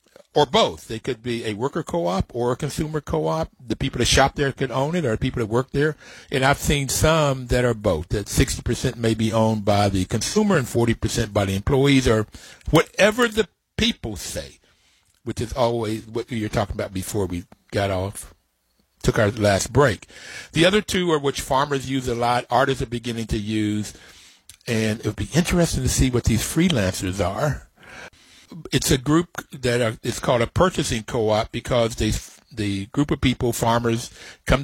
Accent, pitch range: American, 105-130 Hz